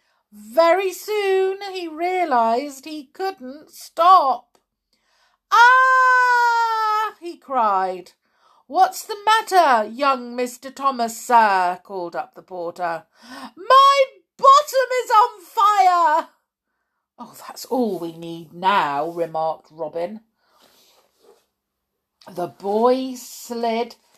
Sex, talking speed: female, 90 wpm